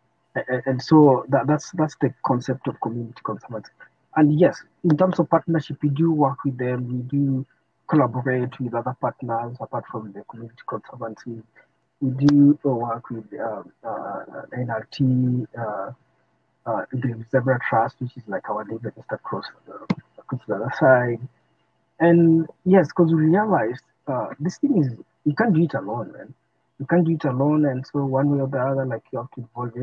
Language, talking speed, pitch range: English, 175 wpm, 120-145 Hz